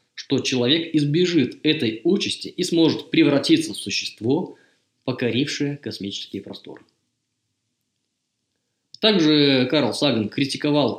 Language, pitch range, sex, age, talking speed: Russian, 115-150 Hz, male, 20-39, 95 wpm